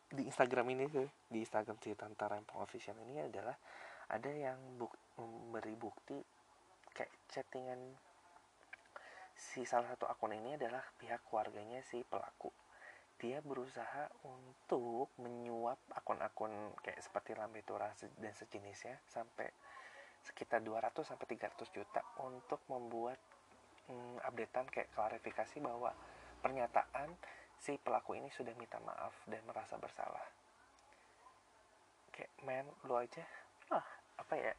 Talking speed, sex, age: 120 wpm, male, 20-39